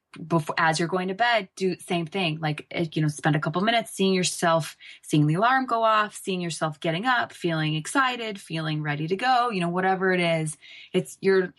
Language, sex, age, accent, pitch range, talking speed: English, female, 20-39, American, 160-195 Hz, 205 wpm